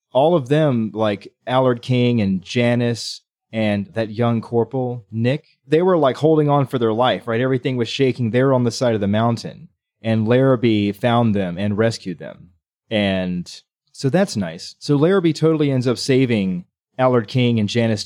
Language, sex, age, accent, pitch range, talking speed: English, male, 30-49, American, 105-135 Hz, 175 wpm